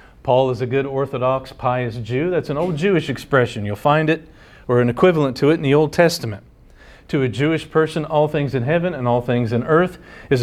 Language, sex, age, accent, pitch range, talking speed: English, male, 50-69, American, 105-140 Hz, 220 wpm